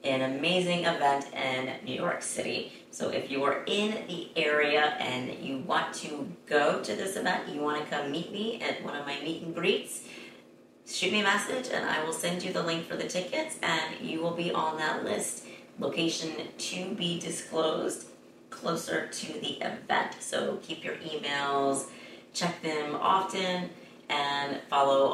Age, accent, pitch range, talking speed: 30-49, American, 140-180 Hz, 175 wpm